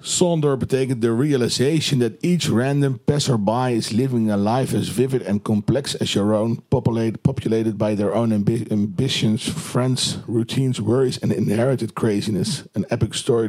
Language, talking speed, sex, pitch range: Dutch, 155 wpm, male, 110-140 Hz